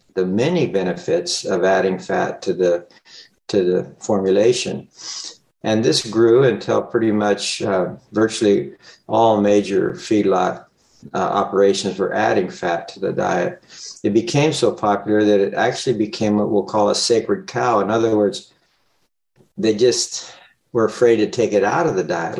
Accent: American